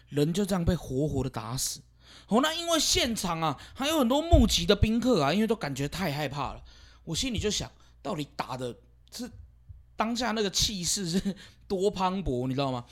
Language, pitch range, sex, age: Chinese, 130-195 Hz, male, 20-39